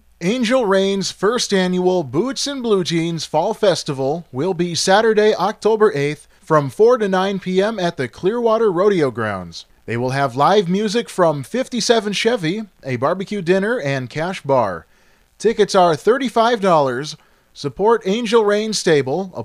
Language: English